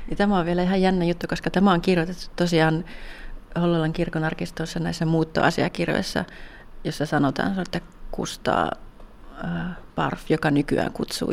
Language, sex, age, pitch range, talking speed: Finnish, female, 30-49, 160-180 Hz, 125 wpm